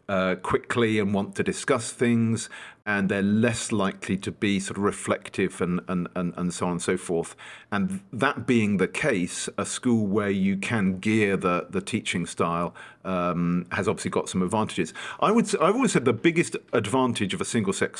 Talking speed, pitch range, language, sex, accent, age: 190 wpm, 95-120 Hz, English, male, British, 50-69